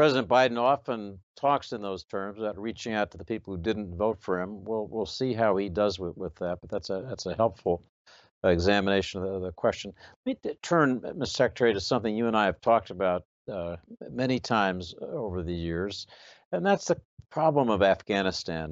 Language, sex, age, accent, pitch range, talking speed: English, male, 60-79, American, 90-120 Hz, 205 wpm